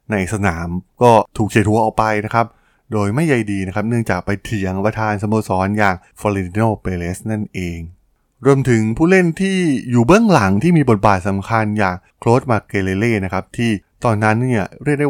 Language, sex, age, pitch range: Thai, male, 20-39, 95-120 Hz